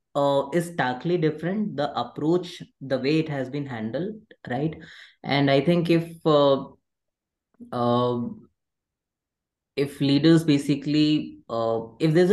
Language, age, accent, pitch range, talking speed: English, 20-39, Indian, 125-160 Hz, 120 wpm